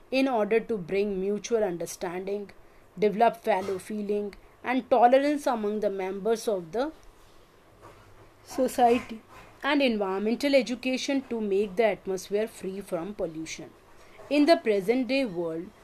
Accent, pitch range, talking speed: Indian, 190-250 Hz, 120 wpm